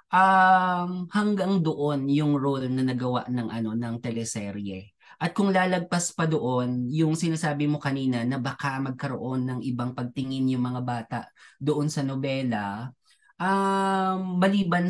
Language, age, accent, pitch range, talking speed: Filipino, 20-39, native, 130-170 Hz, 135 wpm